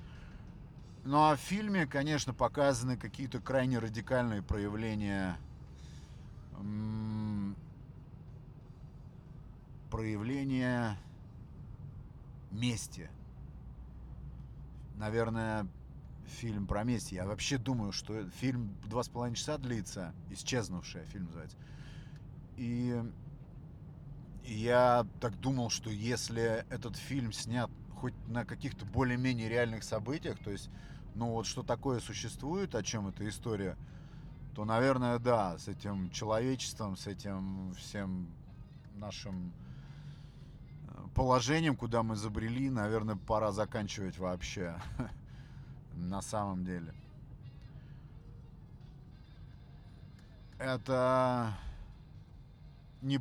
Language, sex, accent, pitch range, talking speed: Russian, male, native, 100-130 Hz, 90 wpm